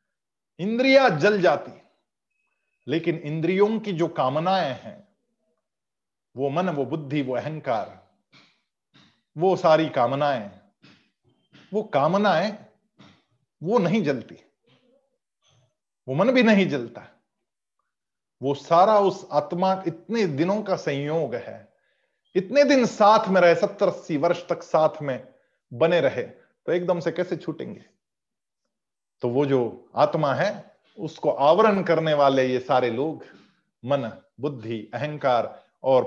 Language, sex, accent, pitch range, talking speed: Hindi, male, native, 150-210 Hz, 120 wpm